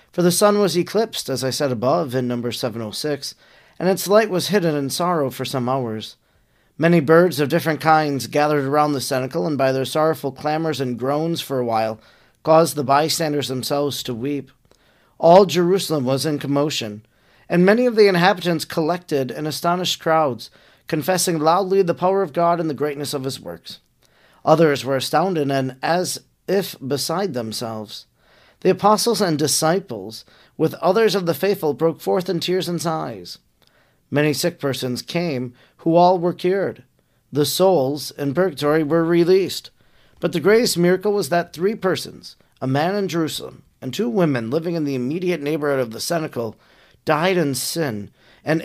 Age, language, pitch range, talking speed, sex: 40-59, English, 135-180 Hz, 170 wpm, male